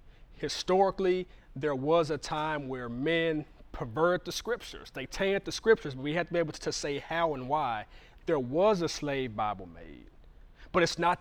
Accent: American